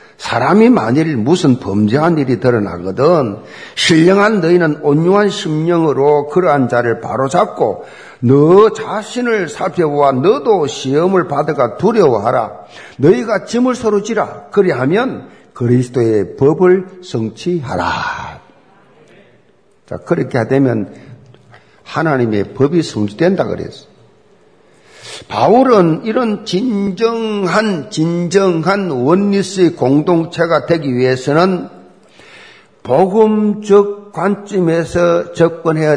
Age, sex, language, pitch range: 50-69, male, Korean, 145-210 Hz